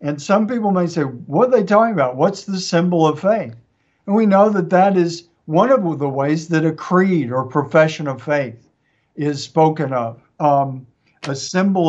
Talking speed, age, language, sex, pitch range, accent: 190 wpm, 60-79, English, male, 140-180 Hz, American